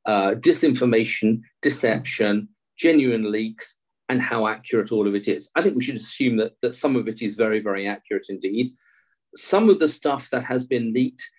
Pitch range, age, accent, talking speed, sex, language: 110-155 Hz, 40-59, British, 185 wpm, male, English